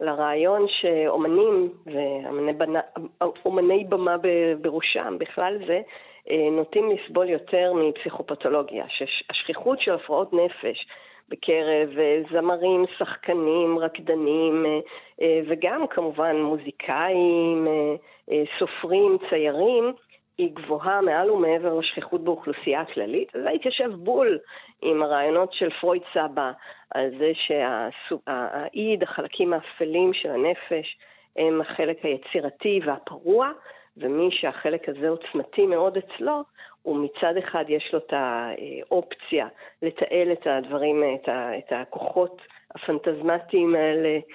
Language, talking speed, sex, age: Hebrew, 95 wpm, female, 50-69